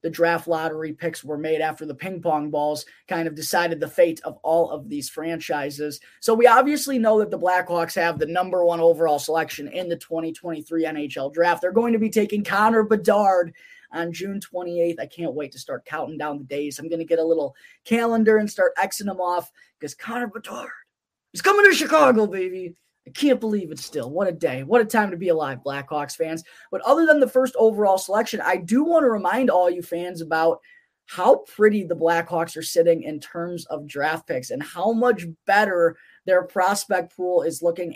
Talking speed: 205 wpm